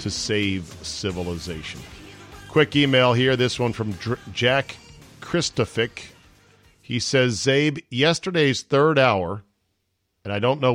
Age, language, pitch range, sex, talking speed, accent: 40-59, English, 95-125 Hz, male, 125 wpm, American